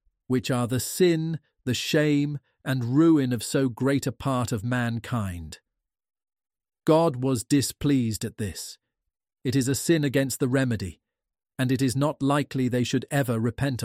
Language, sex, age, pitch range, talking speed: English, male, 40-59, 115-145 Hz, 155 wpm